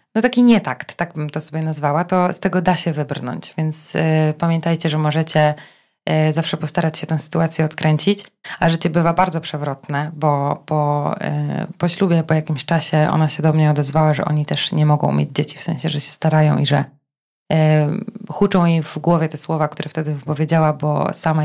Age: 20-39